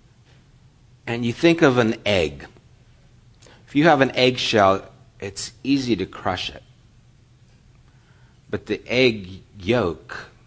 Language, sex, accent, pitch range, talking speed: English, male, American, 100-125 Hz, 115 wpm